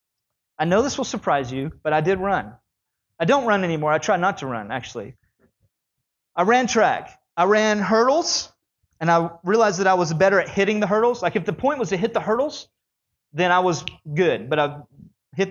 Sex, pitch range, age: male, 170-225 Hz, 30-49